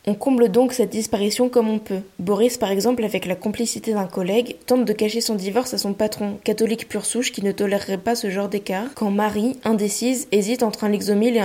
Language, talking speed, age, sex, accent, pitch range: French, 220 wpm, 20-39, female, French, 200-235 Hz